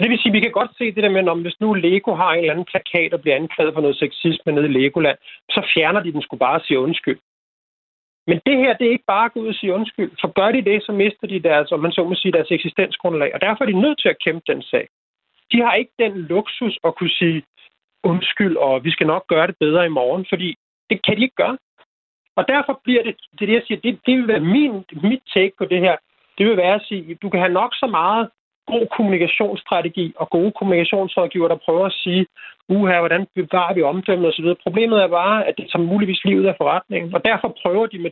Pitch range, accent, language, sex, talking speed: 165-210 Hz, native, Danish, male, 250 wpm